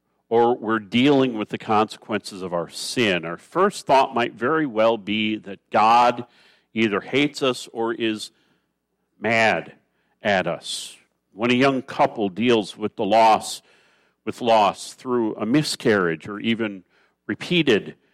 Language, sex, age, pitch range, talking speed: English, male, 50-69, 100-130 Hz, 140 wpm